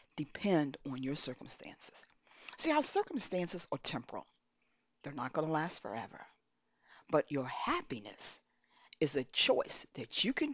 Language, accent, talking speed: English, American, 135 wpm